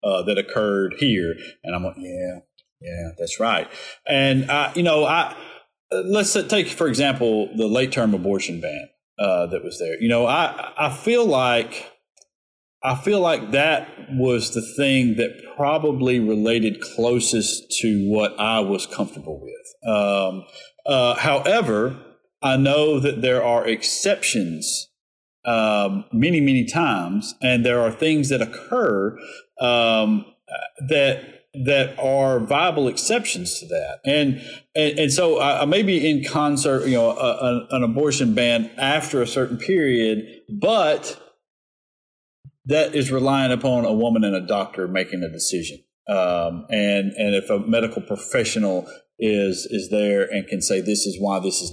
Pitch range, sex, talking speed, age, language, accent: 105-145 Hz, male, 150 wpm, 40-59, English, American